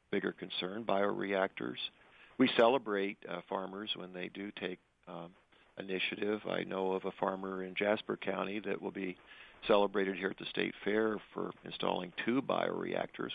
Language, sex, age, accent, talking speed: English, male, 50-69, American, 155 wpm